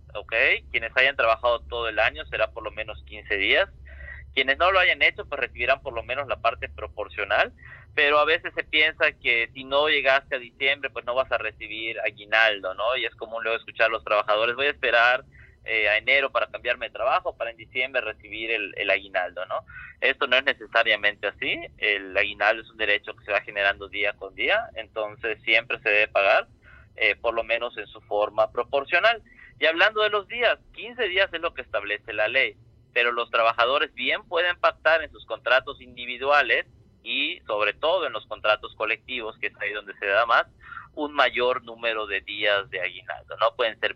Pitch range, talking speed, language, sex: 110-140 Hz, 200 wpm, Spanish, male